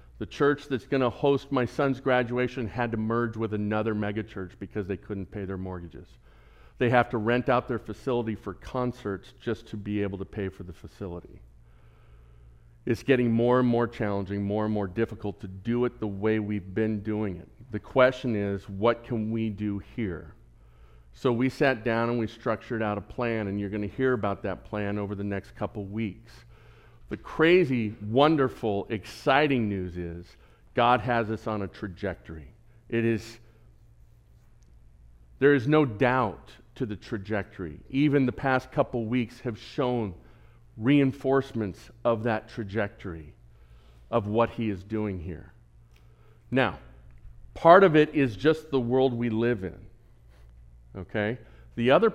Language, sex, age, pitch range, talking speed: English, male, 50-69, 100-120 Hz, 160 wpm